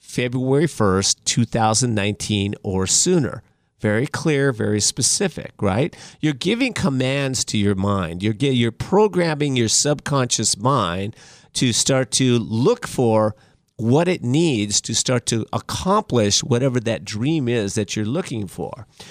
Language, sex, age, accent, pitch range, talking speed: English, male, 50-69, American, 110-145 Hz, 135 wpm